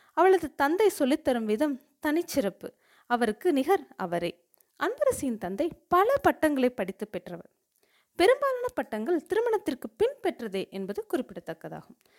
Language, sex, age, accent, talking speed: Tamil, female, 30-49, native, 105 wpm